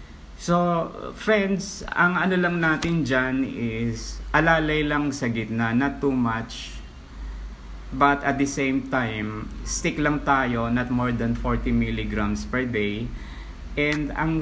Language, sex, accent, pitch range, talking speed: Filipino, male, native, 100-140 Hz, 135 wpm